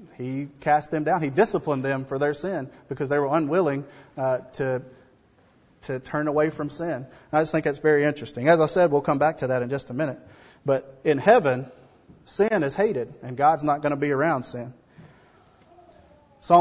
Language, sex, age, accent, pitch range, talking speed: English, male, 30-49, American, 140-165 Hz, 195 wpm